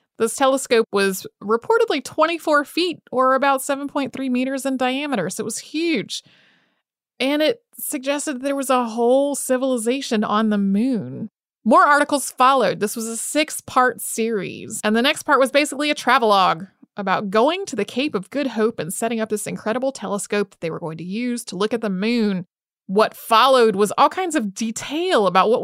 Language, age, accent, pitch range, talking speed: English, 30-49, American, 210-275 Hz, 180 wpm